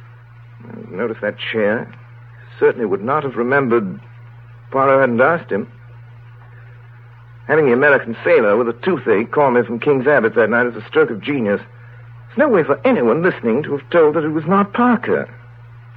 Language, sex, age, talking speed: English, male, 60-79, 170 wpm